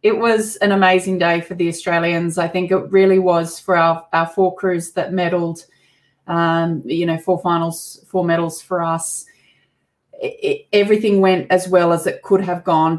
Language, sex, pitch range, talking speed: English, female, 165-190 Hz, 185 wpm